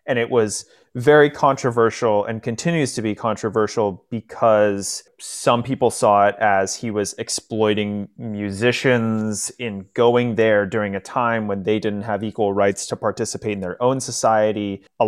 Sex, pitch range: male, 100-120 Hz